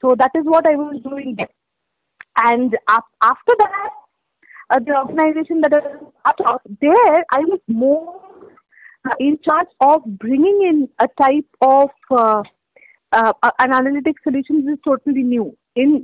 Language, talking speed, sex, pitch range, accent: English, 145 wpm, female, 235-295 Hz, Indian